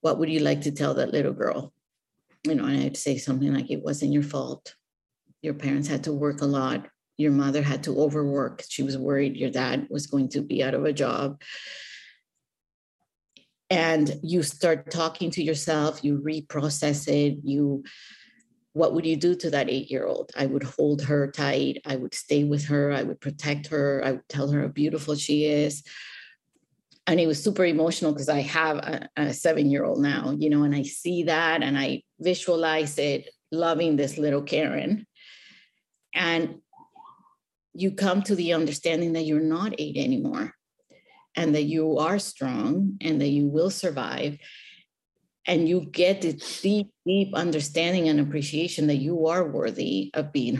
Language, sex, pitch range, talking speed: English, female, 145-170 Hz, 175 wpm